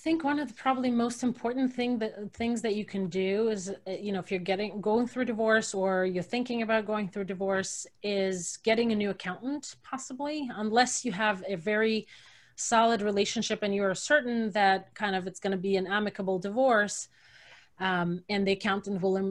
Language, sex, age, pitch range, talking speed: English, female, 30-49, 190-225 Hz, 200 wpm